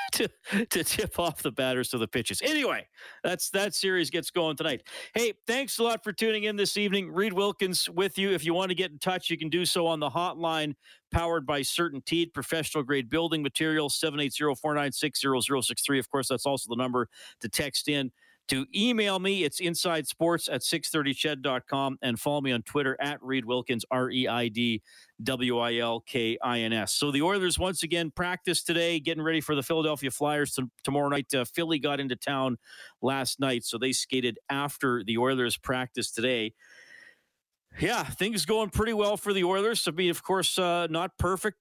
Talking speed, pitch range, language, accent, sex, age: 175 wpm, 130-175 Hz, English, American, male, 40-59